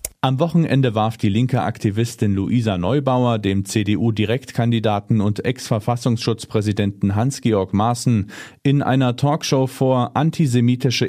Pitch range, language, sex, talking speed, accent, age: 105-135 Hz, German, male, 105 wpm, German, 40-59